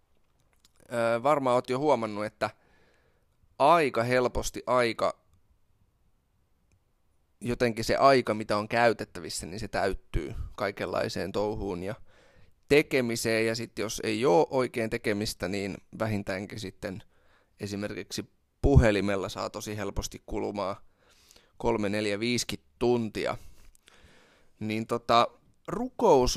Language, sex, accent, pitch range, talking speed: Finnish, male, native, 100-120 Hz, 100 wpm